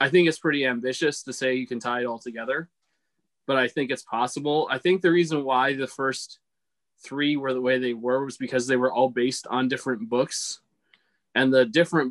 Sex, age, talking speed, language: male, 20-39, 215 wpm, English